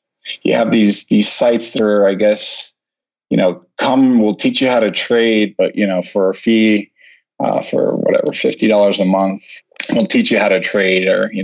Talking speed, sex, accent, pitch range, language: 200 wpm, male, American, 95-115 Hz, English